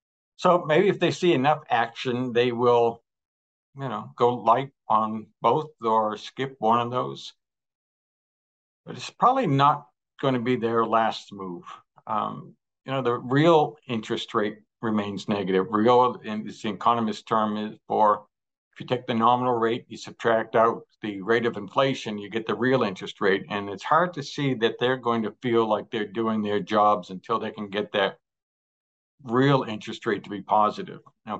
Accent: American